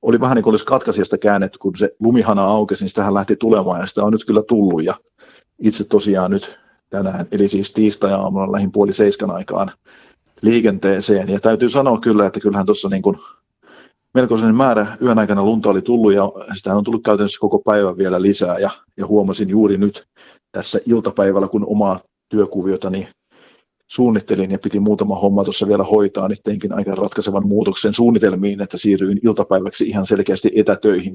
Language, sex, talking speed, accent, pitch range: Finnish, male, 170 wpm, native, 95-105 Hz